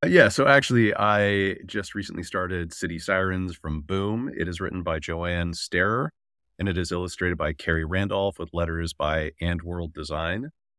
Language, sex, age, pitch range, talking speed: English, male, 30-49, 85-100 Hz, 165 wpm